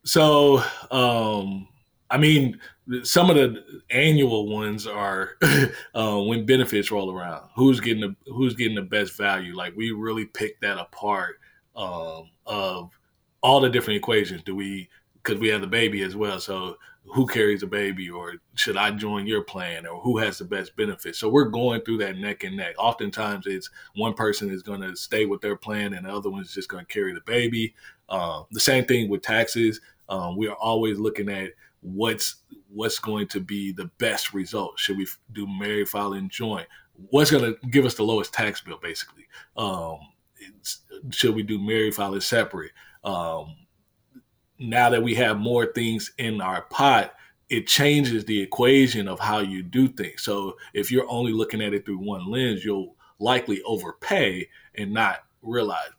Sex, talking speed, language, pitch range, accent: male, 185 wpm, English, 100-125 Hz, American